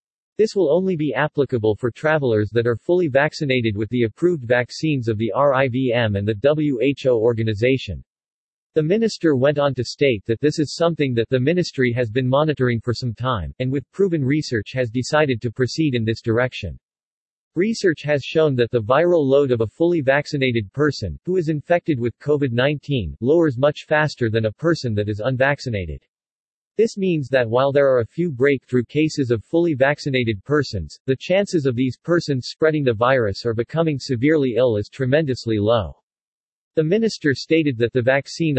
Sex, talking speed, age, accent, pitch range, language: male, 175 wpm, 40-59, American, 120-150 Hz, English